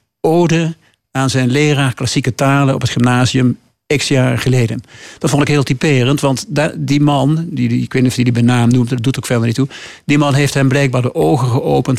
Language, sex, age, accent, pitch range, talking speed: Dutch, male, 50-69, Dutch, 130-150 Hz, 225 wpm